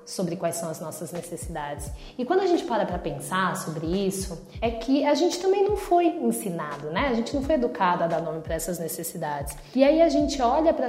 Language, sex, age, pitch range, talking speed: Portuguese, female, 20-39, 180-230 Hz, 225 wpm